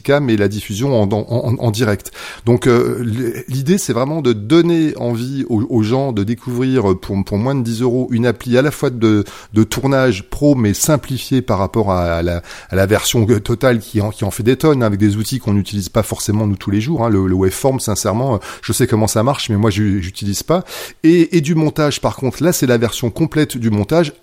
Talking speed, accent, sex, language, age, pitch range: 230 wpm, French, male, French, 30-49, 105-130 Hz